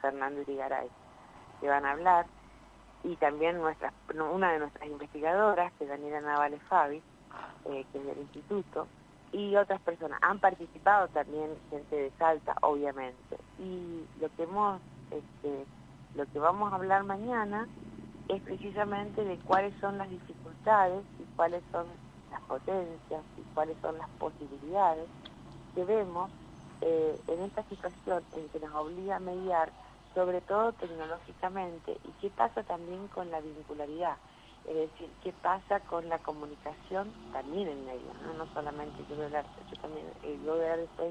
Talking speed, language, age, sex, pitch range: 155 wpm, Spanish, 50-69, female, 150-190 Hz